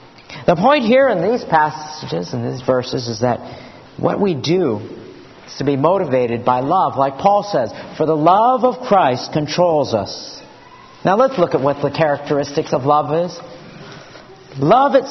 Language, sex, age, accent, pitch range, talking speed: English, male, 50-69, American, 140-195 Hz, 165 wpm